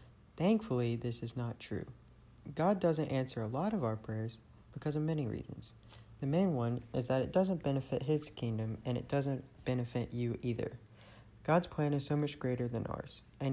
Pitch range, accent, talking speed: 120-150 Hz, American, 185 wpm